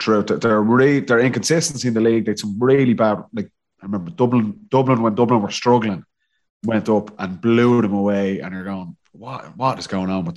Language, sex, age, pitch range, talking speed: English, male, 30-49, 105-130 Hz, 210 wpm